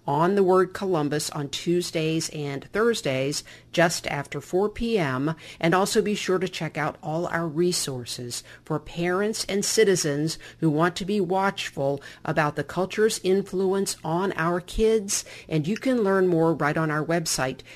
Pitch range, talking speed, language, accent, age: 150-190 Hz, 160 wpm, English, American, 50-69